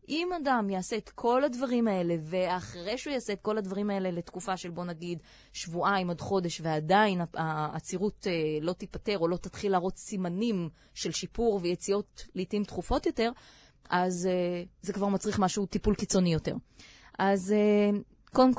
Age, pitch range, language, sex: 20-39, 175-210 Hz, Hebrew, female